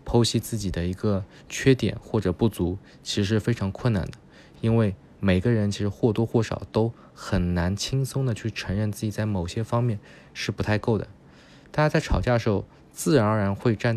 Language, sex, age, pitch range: Chinese, male, 20-39, 90-110 Hz